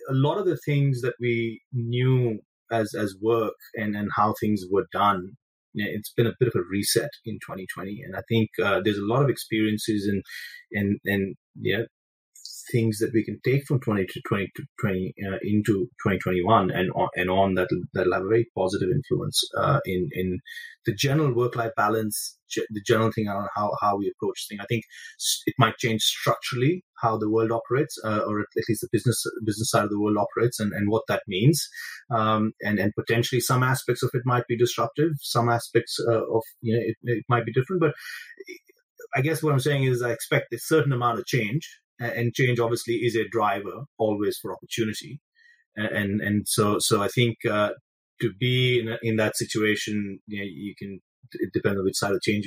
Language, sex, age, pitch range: English, male, 30-49, 105-125 Hz